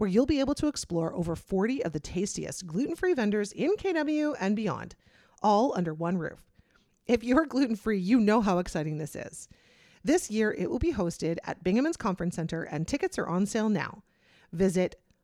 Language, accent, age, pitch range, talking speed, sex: English, American, 30-49, 175-270 Hz, 185 wpm, female